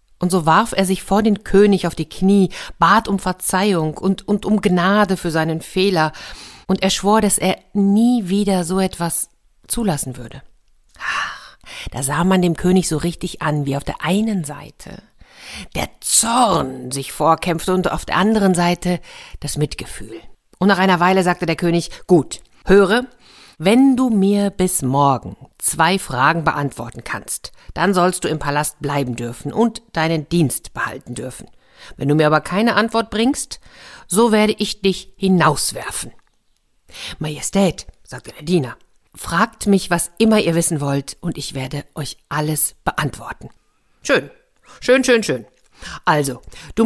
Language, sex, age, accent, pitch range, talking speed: German, female, 50-69, German, 155-200 Hz, 155 wpm